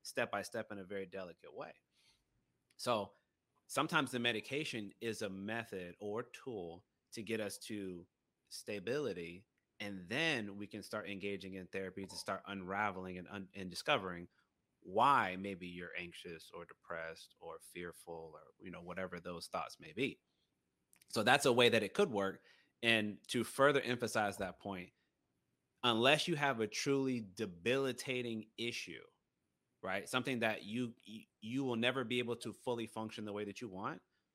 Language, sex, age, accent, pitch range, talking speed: English, male, 30-49, American, 95-120 Hz, 160 wpm